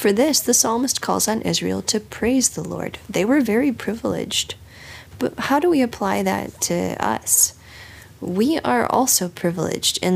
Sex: female